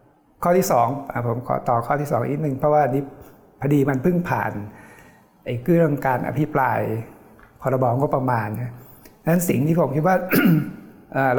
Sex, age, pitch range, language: male, 60-79, 130-165 Hz, Thai